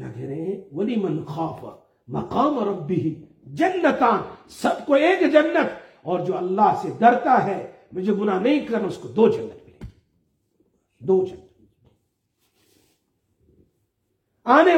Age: 50-69